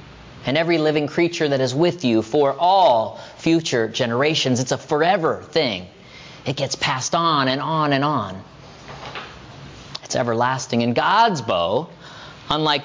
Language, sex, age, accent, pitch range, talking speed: English, male, 30-49, American, 135-180 Hz, 140 wpm